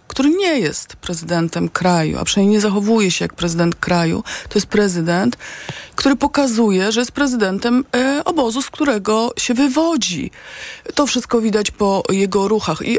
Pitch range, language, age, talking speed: 175-245 Hz, Polish, 30-49, 150 wpm